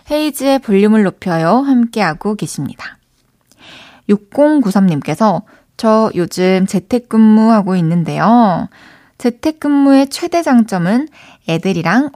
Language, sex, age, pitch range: Korean, female, 20-39, 185-260 Hz